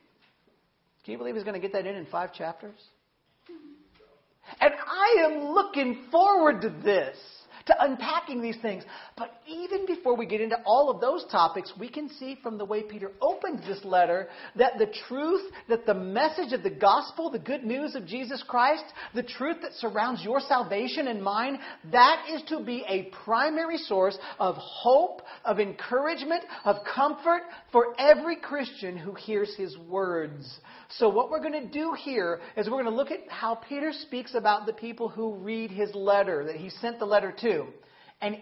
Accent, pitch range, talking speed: American, 200-295 Hz, 180 wpm